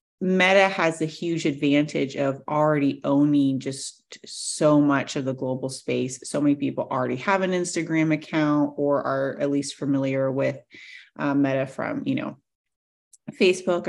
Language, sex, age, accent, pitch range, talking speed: English, female, 30-49, American, 140-165 Hz, 150 wpm